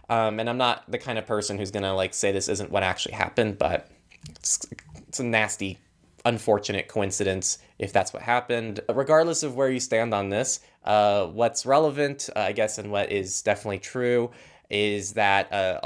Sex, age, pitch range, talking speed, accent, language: male, 20-39, 100-130 Hz, 185 wpm, American, English